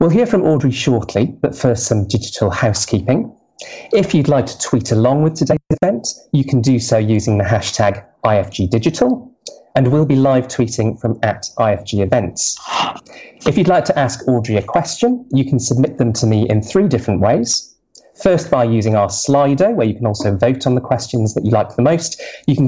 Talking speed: 195 wpm